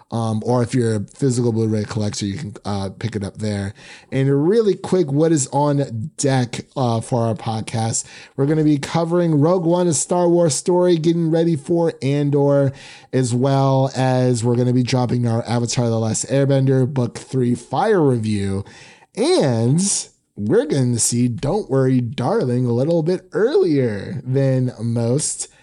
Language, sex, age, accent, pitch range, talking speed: English, male, 30-49, American, 115-145 Hz, 170 wpm